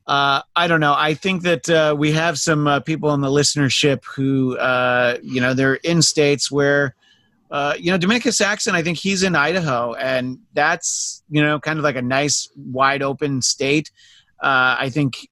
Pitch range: 135-170 Hz